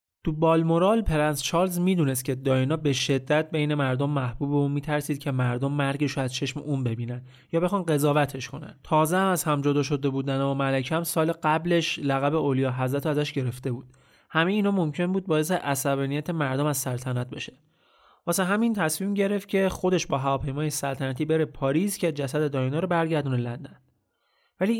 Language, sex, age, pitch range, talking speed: Persian, male, 30-49, 135-170 Hz, 175 wpm